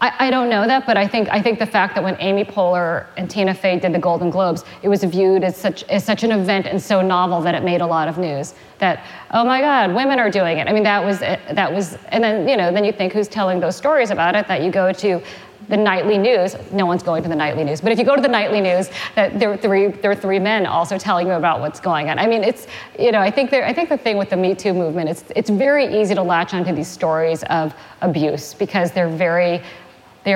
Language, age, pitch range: English, 40-59, 175-215 Hz